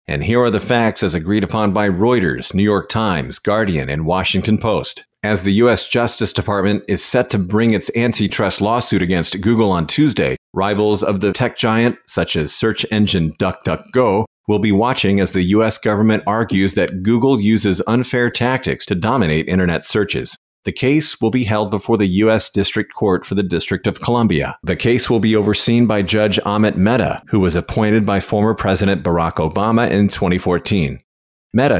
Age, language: 40-59, English